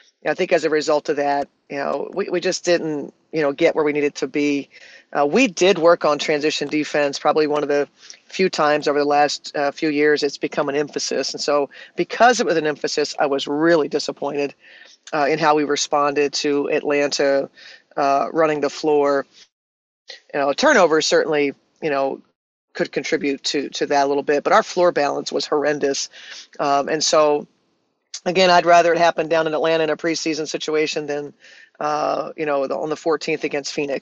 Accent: American